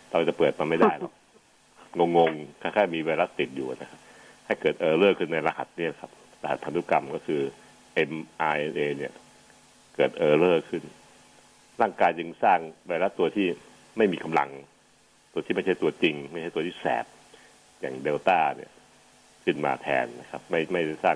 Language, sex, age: Thai, male, 60-79